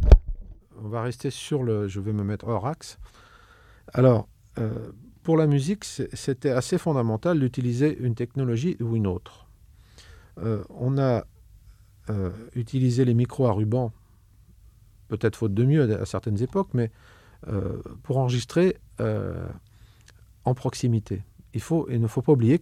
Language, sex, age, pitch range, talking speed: French, male, 40-59, 100-130 Hz, 145 wpm